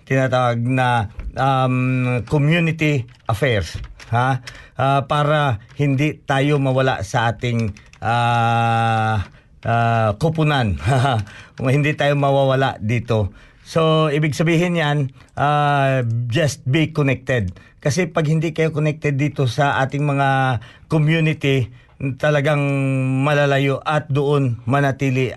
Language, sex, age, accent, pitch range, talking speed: Filipino, male, 50-69, native, 125-150 Hz, 105 wpm